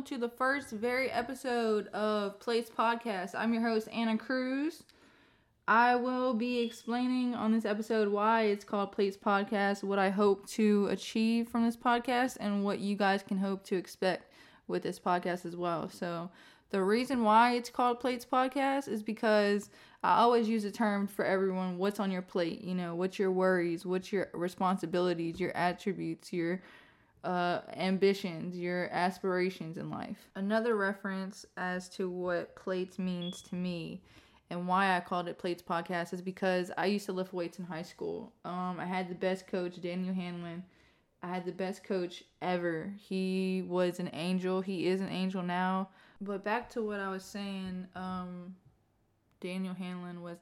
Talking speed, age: 170 wpm, 20-39